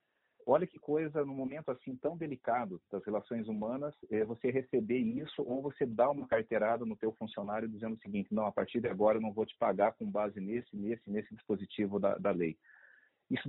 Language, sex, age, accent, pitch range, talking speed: Portuguese, male, 40-59, Brazilian, 115-160 Hz, 200 wpm